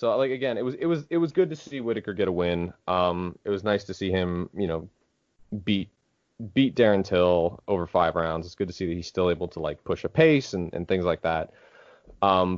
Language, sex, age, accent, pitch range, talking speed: English, male, 20-39, American, 85-115 Hz, 245 wpm